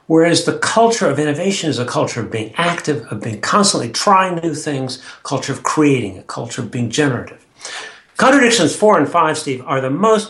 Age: 60-79